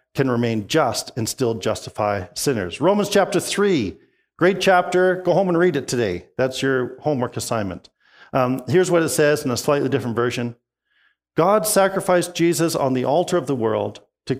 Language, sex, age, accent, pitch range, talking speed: English, male, 50-69, American, 120-175 Hz, 175 wpm